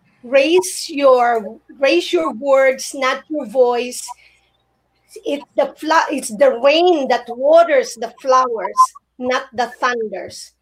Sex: female